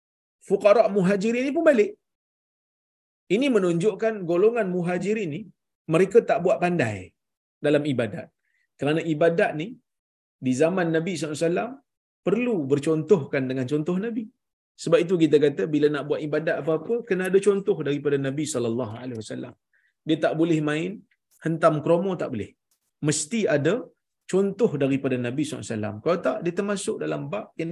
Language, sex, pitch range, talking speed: Malayalam, male, 145-220 Hz, 150 wpm